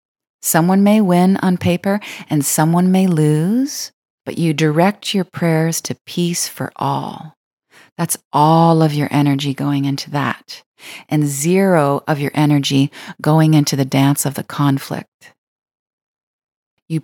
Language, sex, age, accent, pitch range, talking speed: English, female, 30-49, American, 145-175 Hz, 135 wpm